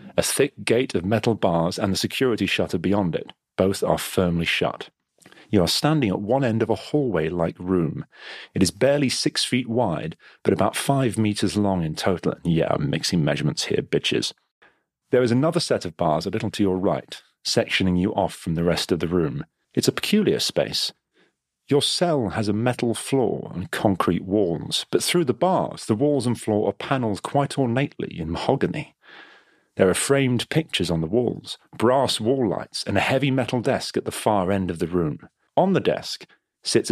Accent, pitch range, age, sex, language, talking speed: British, 90-125 Hz, 40-59, male, English, 190 wpm